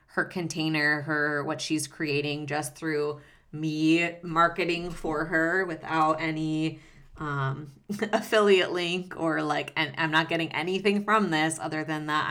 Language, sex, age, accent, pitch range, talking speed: English, female, 20-39, American, 150-170 Hz, 140 wpm